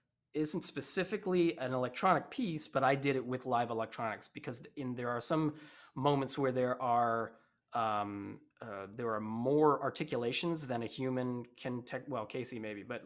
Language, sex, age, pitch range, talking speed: English, male, 20-39, 115-140 Hz, 160 wpm